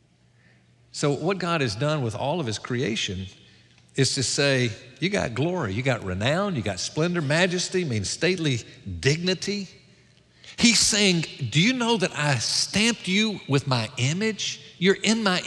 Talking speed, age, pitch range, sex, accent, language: 160 wpm, 50-69, 130-180 Hz, male, American, English